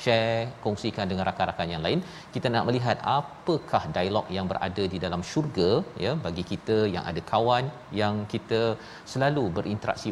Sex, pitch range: male, 90-115 Hz